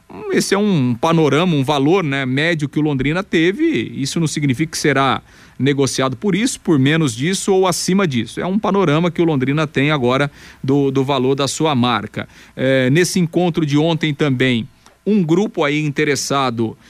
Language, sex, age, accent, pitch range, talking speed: Portuguese, male, 40-59, Brazilian, 130-165 Hz, 175 wpm